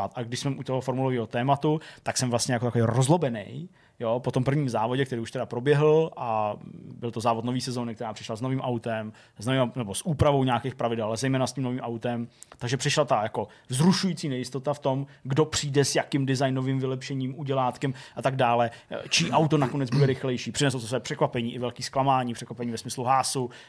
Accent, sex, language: native, male, Czech